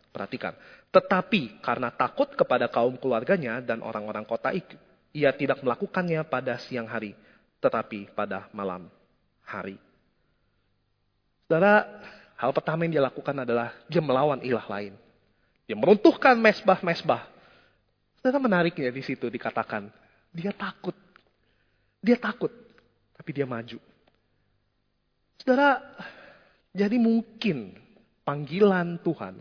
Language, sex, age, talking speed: Indonesian, male, 30-49, 105 wpm